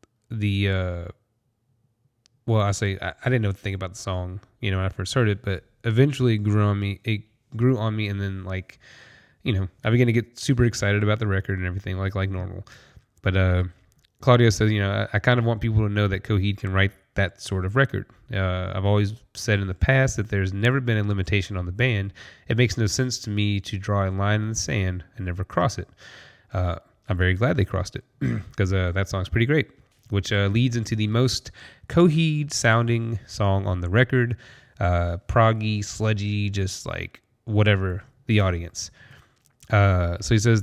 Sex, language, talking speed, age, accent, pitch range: male, English, 210 wpm, 20-39, American, 95-115 Hz